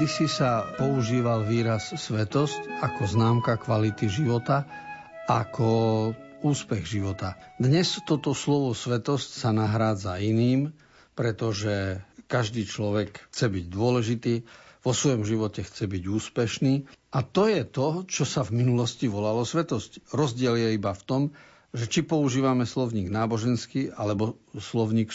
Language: Slovak